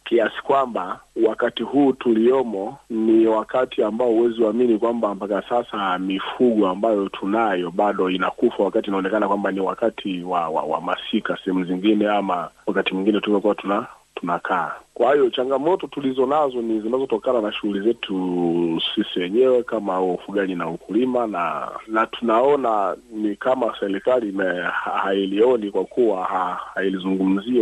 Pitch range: 95-115 Hz